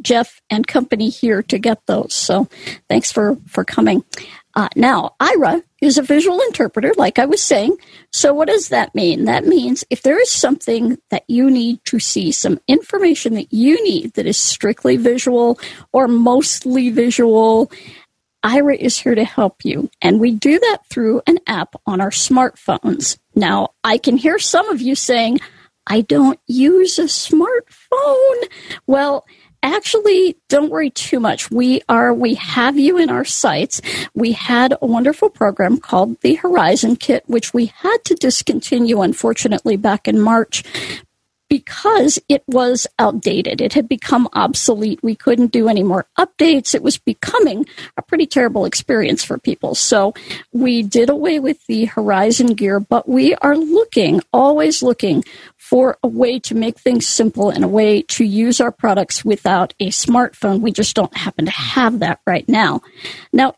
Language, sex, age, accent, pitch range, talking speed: English, female, 50-69, American, 225-295 Hz, 165 wpm